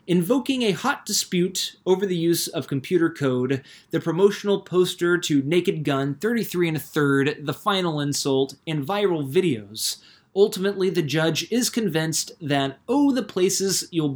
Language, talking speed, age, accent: English, 155 wpm, 20-39, American